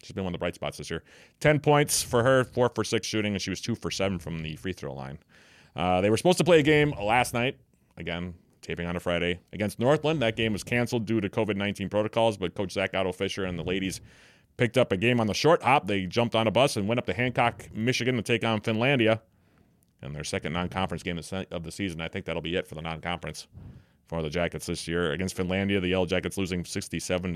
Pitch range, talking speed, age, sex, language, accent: 85-115 Hz, 245 wpm, 30-49, male, English, American